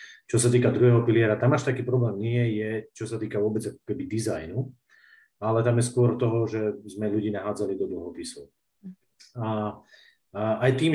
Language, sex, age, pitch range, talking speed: Slovak, male, 30-49, 105-120 Hz, 175 wpm